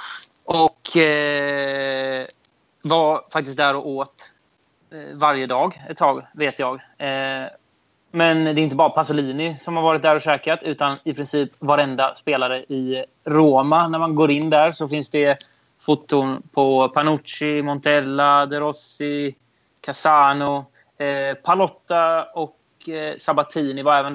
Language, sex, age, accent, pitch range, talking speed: Swedish, male, 20-39, native, 135-155 Hz, 125 wpm